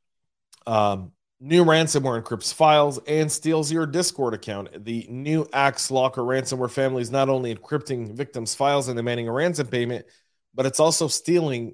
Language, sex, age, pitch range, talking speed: English, male, 40-59, 105-135 Hz, 160 wpm